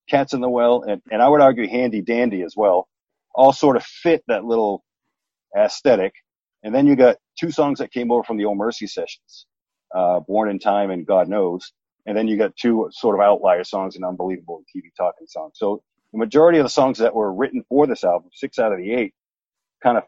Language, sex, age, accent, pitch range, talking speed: English, male, 40-59, American, 105-150 Hz, 220 wpm